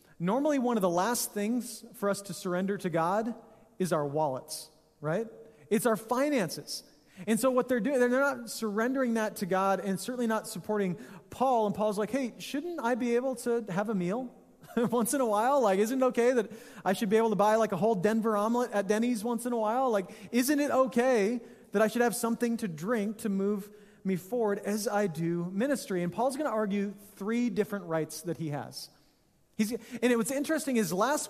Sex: male